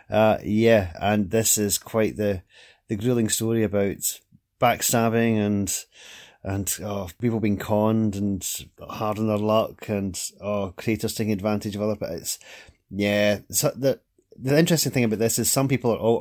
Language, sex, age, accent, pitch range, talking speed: English, male, 30-49, British, 100-115 Hz, 165 wpm